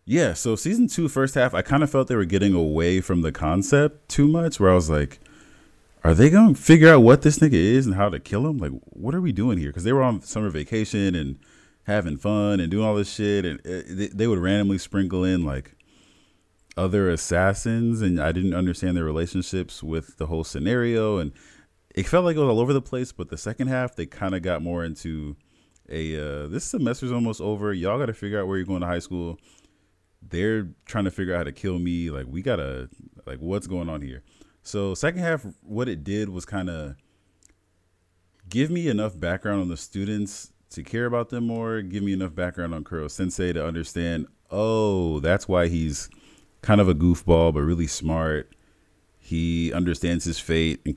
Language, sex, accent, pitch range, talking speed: English, male, American, 80-105 Hz, 205 wpm